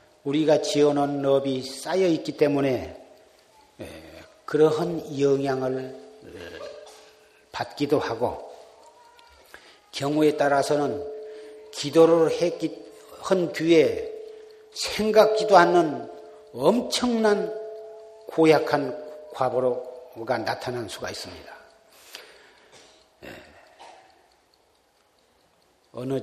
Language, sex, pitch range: Korean, male, 130-215 Hz